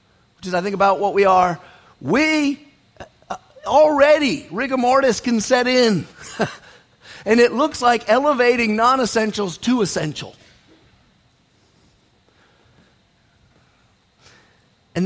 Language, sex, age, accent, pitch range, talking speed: English, male, 50-69, American, 155-245 Hz, 90 wpm